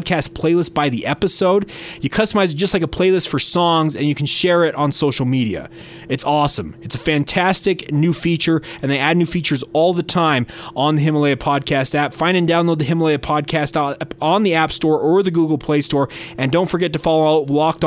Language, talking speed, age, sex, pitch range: English, 220 wpm, 30-49, male, 145-175 Hz